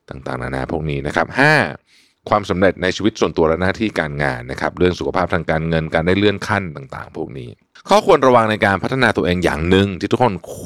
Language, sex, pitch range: Thai, male, 80-115 Hz